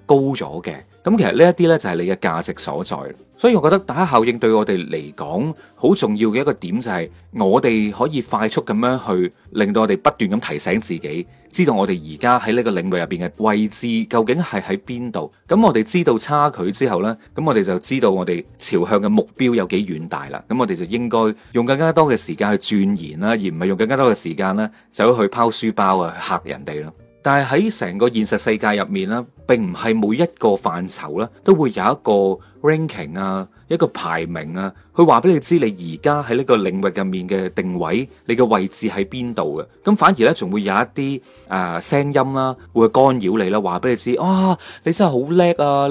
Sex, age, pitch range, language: male, 30-49, 100-145 Hz, Chinese